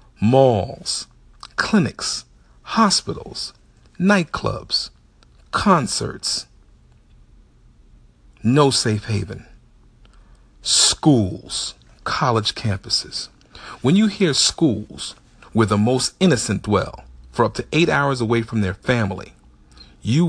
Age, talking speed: 40-59, 90 wpm